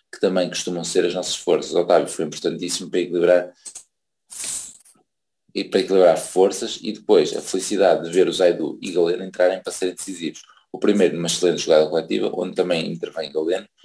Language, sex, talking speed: Portuguese, male, 180 wpm